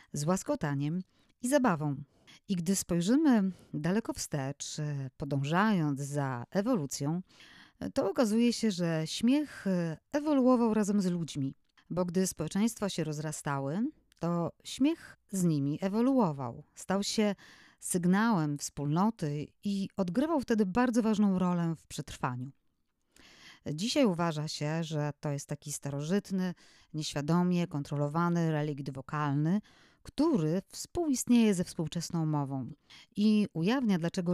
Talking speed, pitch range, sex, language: 110 wpm, 145-210 Hz, female, Polish